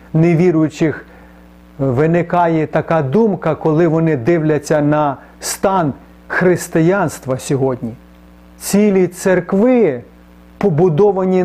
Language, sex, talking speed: Ukrainian, male, 75 wpm